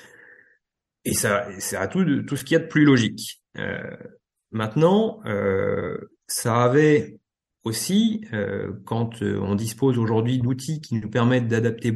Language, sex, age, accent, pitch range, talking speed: French, male, 30-49, French, 110-150 Hz, 145 wpm